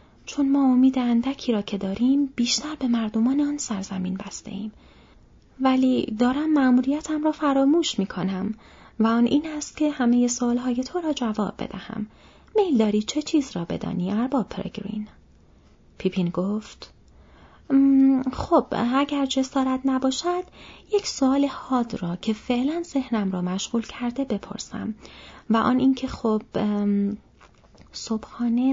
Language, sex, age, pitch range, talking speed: Persian, female, 30-49, 215-275 Hz, 130 wpm